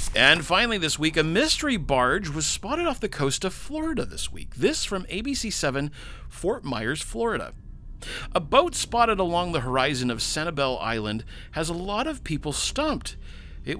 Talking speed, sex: 165 wpm, male